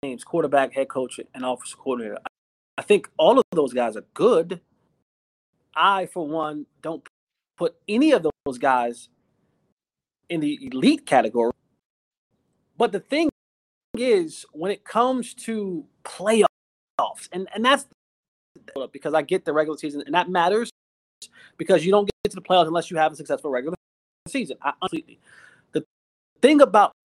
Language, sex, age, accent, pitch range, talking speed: English, male, 30-49, American, 165-240 Hz, 155 wpm